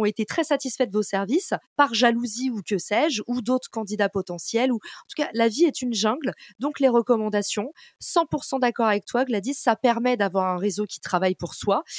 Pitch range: 200-255 Hz